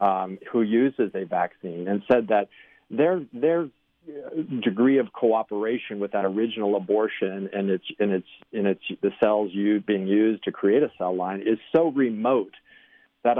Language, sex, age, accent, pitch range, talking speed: English, male, 50-69, American, 95-120 Hz, 160 wpm